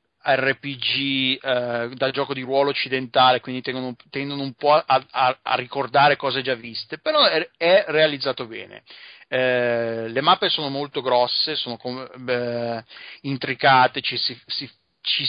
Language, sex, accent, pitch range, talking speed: Italian, male, native, 120-140 Hz, 140 wpm